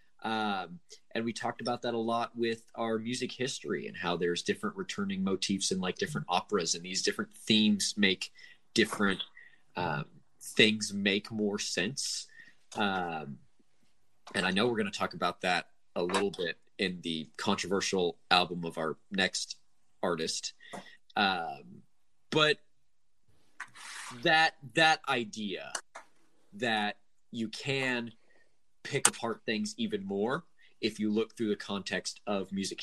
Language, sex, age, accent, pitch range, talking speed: English, male, 20-39, American, 95-130 Hz, 135 wpm